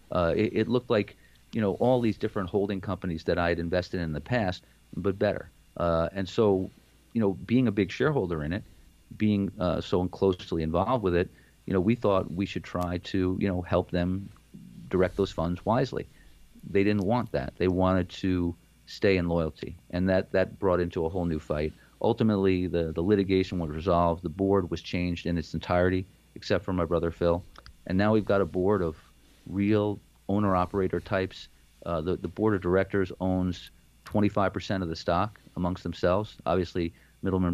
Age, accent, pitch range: 40-59, American, 85-100 Hz